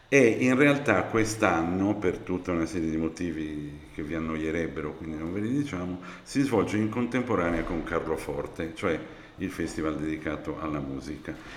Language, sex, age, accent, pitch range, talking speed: Italian, male, 50-69, native, 80-105 Hz, 155 wpm